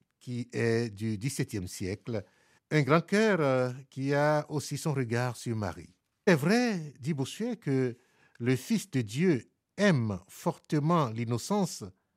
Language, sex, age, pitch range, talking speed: French, male, 60-79, 125-180 Hz, 140 wpm